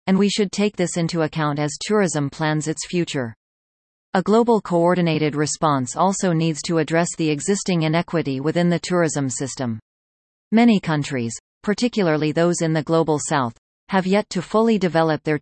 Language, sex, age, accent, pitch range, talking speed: English, female, 40-59, American, 145-180 Hz, 160 wpm